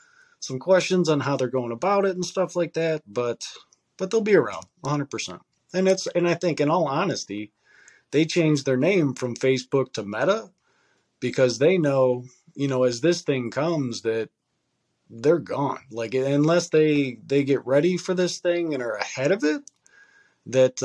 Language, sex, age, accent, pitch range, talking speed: English, male, 20-39, American, 125-155 Hz, 175 wpm